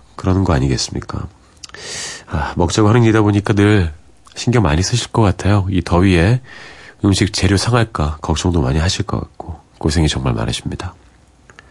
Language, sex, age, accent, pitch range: Korean, male, 40-59, native, 85-120 Hz